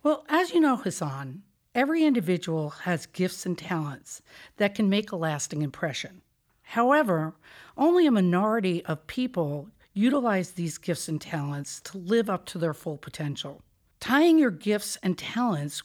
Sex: female